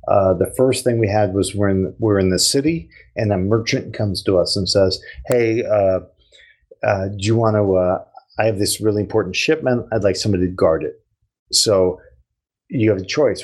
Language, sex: English, male